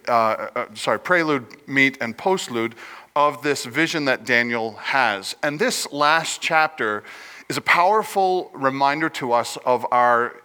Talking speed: 140 wpm